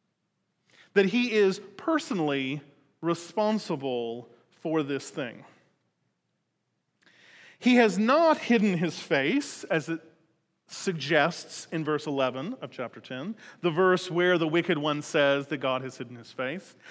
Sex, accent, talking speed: male, American, 130 wpm